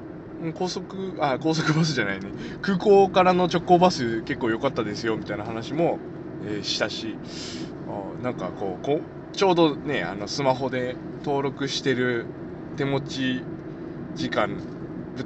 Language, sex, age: Japanese, male, 20-39